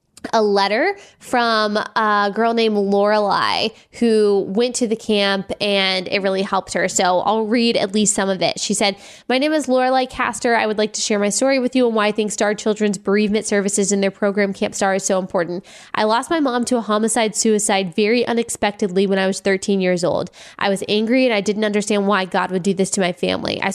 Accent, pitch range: American, 200-235 Hz